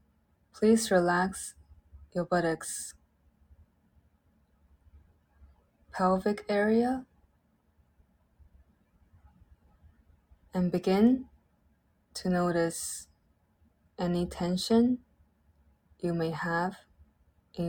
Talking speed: 55 wpm